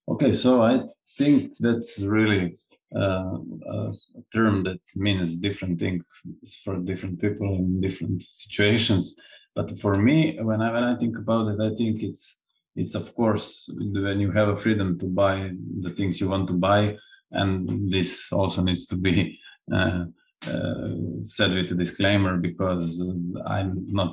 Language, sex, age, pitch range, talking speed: English, male, 20-39, 90-100 Hz, 155 wpm